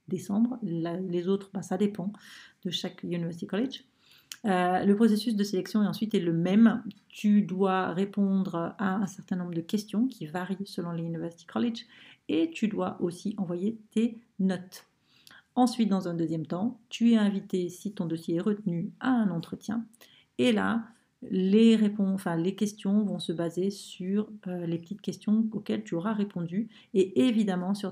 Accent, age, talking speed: French, 40-59, 160 wpm